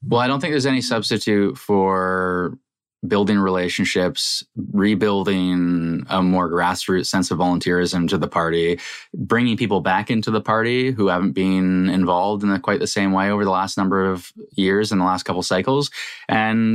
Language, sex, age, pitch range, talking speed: English, male, 20-39, 90-105 Hz, 175 wpm